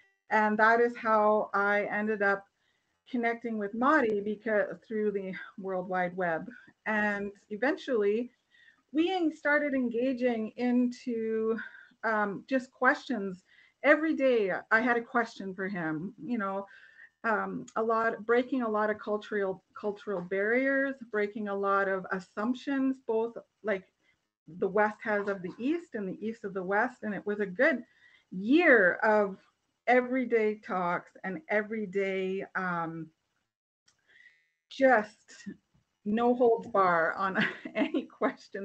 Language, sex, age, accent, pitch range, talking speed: English, female, 40-59, American, 195-240 Hz, 130 wpm